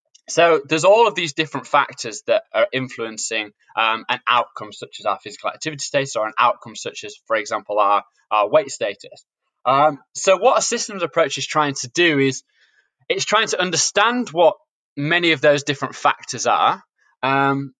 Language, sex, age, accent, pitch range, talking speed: English, male, 20-39, British, 130-170 Hz, 180 wpm